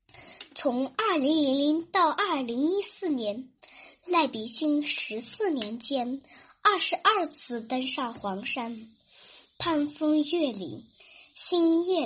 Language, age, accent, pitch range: Chinese, 10-29, native, 250-335 Hz